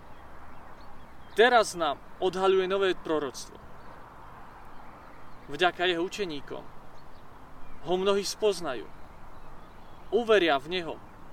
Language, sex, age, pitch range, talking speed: Slovak, male, 40-59, 170-210 Hz, 75 wpm